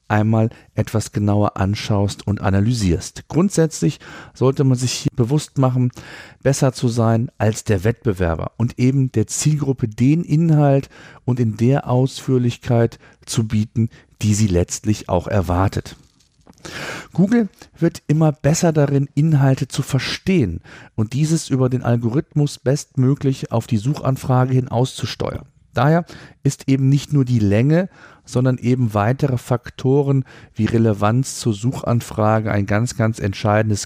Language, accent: German, German